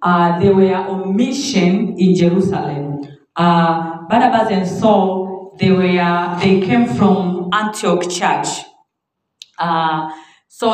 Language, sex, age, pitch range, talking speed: Swahili, female, 40-59, 170-210 Hz, 110 wpm